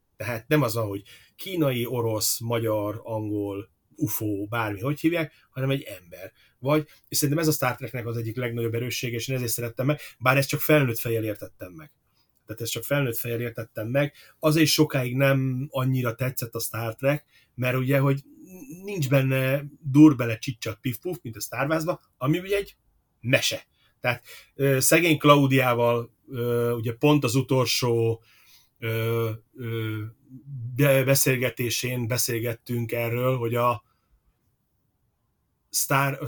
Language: Hungarian